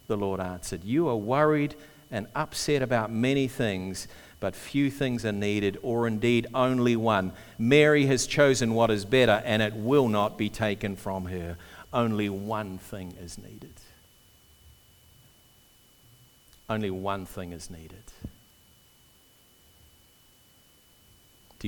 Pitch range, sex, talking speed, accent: 100-125 Hz, male, 125 wpm, Australian